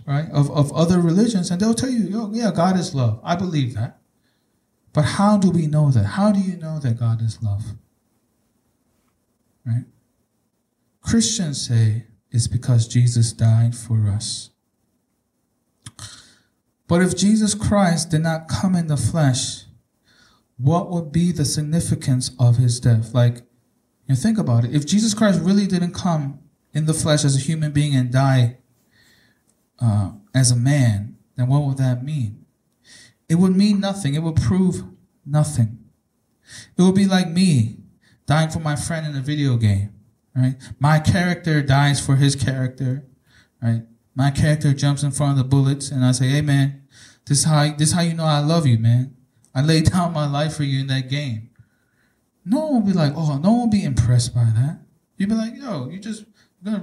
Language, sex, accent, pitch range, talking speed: English, male, American, 120-170 Hz, 180 wpm